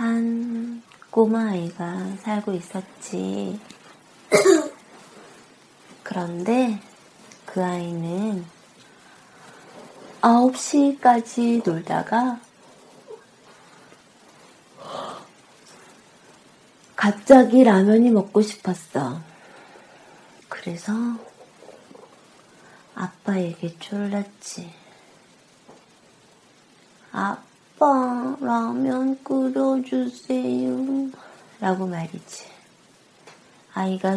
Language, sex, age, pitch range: Korean, female, 30-49, 180-250 Hz